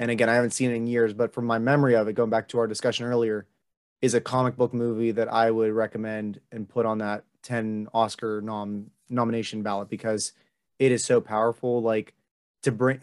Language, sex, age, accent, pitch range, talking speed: English, male, 20-39, American, 115-135 Hz, 210 wpm